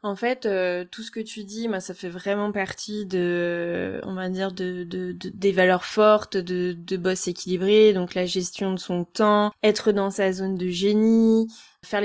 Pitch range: 190-220 Hz